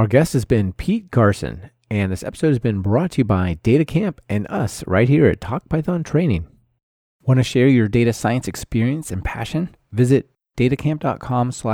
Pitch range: 100-135 Hz